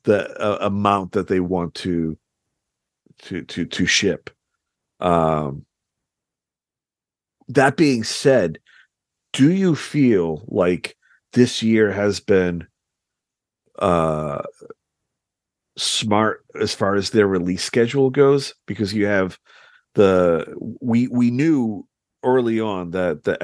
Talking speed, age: 110 wpm, 40-59